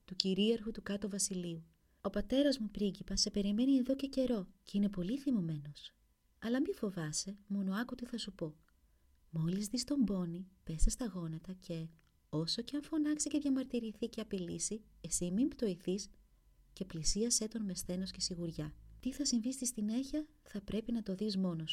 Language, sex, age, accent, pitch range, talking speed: Greek, female, 30-49, native, 180-235 Hz, 175 wpm